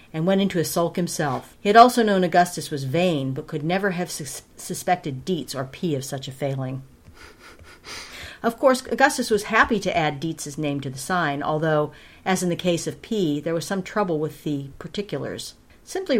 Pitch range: 140-190 Hz